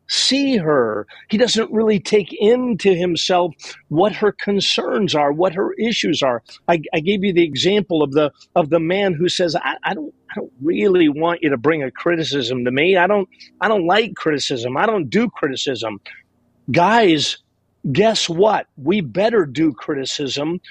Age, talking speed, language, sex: 50-69, 175 wpm, English, male